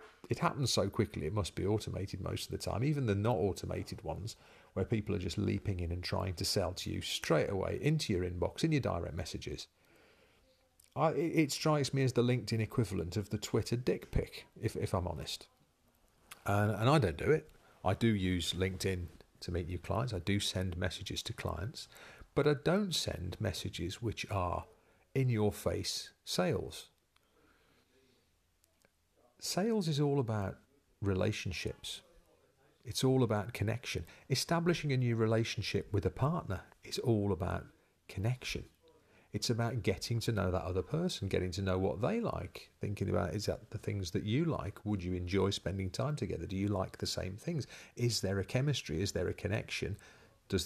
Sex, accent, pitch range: male, British, 95-125 Hz